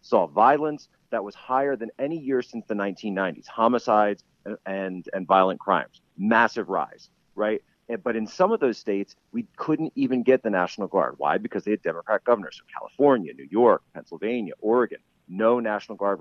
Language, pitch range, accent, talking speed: English, 100-125 Hz, American, 180 wpm